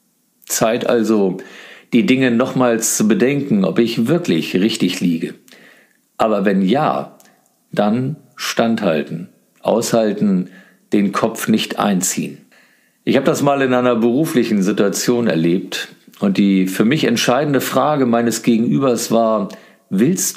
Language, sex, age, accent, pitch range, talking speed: German, male, 50-69, German, 110-130 Hz, 120 wpm